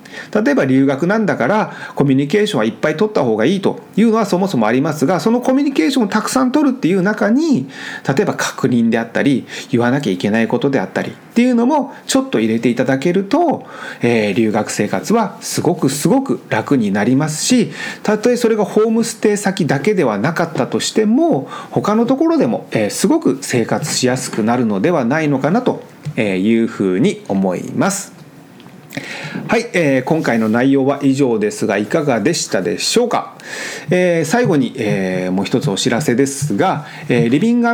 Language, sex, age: Japanese, male, 40-59